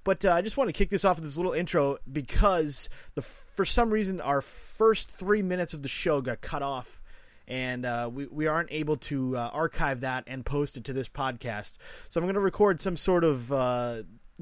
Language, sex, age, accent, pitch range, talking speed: English, male, 20-39, American, 130-165 Hz, 220 wpm